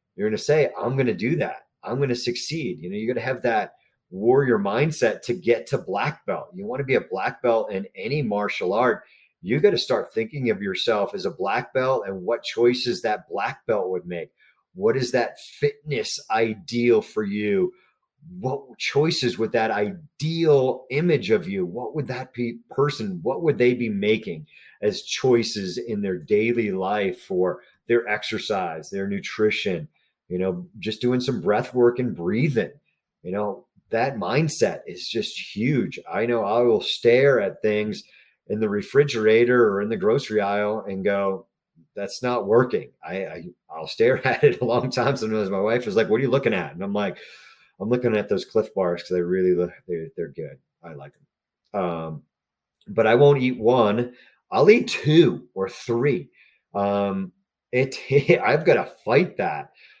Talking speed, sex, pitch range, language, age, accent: 180 wpm, male, 100-135 Hz, English, 30-49, American